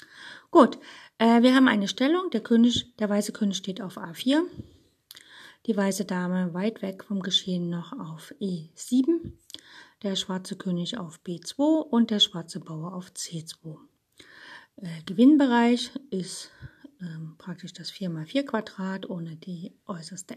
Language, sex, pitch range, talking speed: German, female, 170-225 Hz, 130 wpm